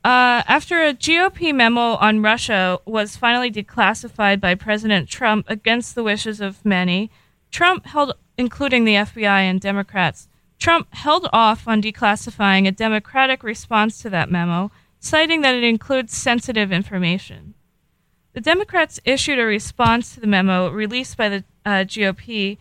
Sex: female